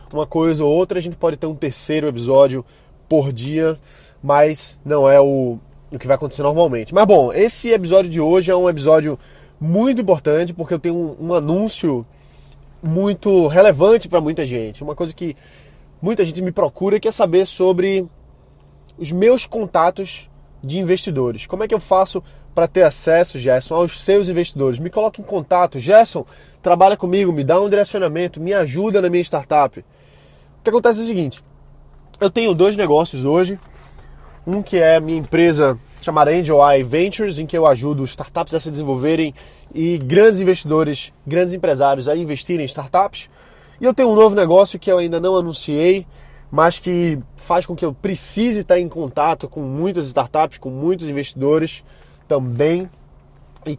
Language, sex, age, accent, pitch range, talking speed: Portuguese, male, 20-39, Brazilian, 145-185 Hz, 175 wpm